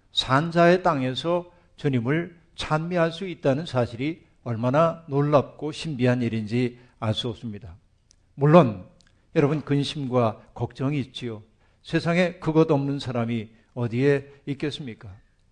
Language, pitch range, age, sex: Korean, 120-155 Hz, 50-69, male